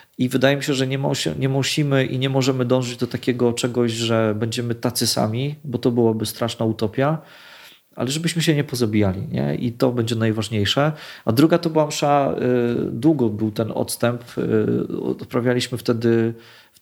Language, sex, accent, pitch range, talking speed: English, male, Polish, 115-130 Hz, 175 wpm